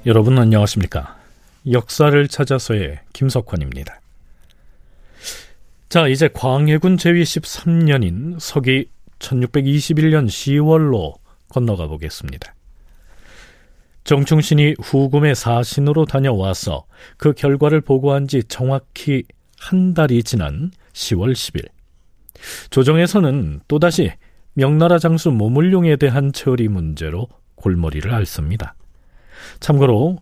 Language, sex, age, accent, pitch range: Korean, male, 40-59, native, 100-150 Hz